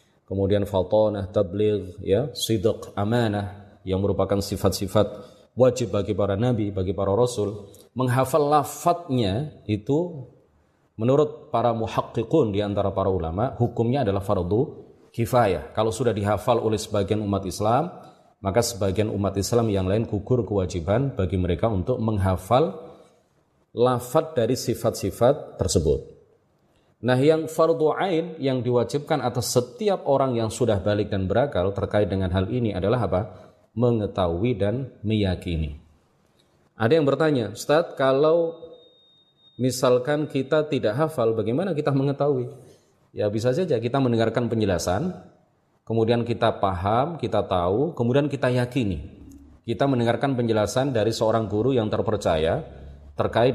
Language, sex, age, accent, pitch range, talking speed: Indonesian, male, 30-49, native, 100-130 Hz, 120 wpm